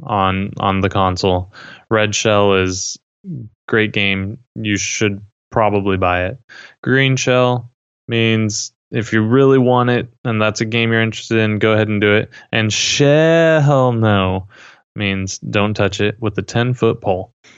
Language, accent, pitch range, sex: English, American, 105-125 Hz, male